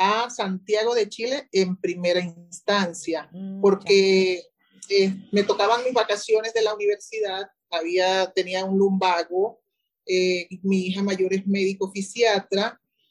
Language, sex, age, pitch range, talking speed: Spanish, male, 40-59, 180-220 Hz, 125 wpm